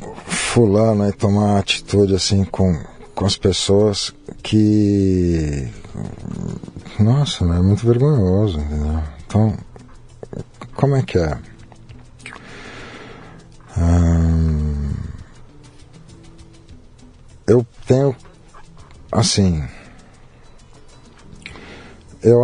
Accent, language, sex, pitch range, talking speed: Brazilian, Portuguese, male, 90-115 Hz, 65 wpm